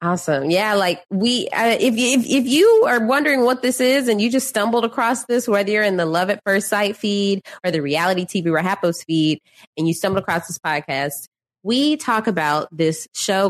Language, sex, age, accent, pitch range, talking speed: English, female, 20-39, American, 160-220 Hz, 210 wpm